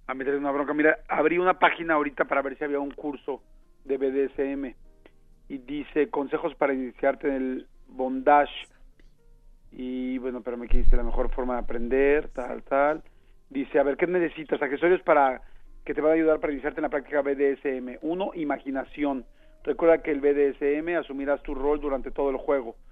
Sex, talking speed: male, 180 wpm